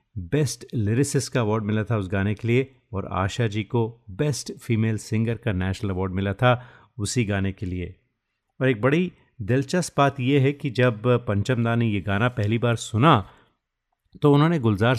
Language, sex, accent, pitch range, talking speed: Hindi, male, native, 105-130 Hz, 180 wpm